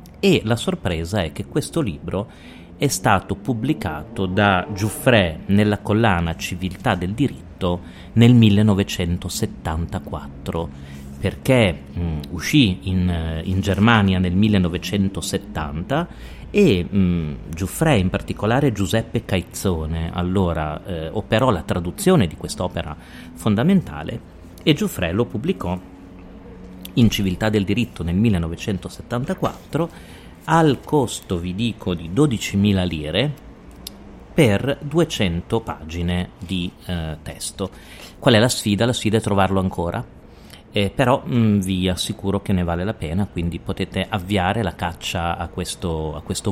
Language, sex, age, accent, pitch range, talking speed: Italian, male, 40-59, native, 90-110 Hz, 115 wpm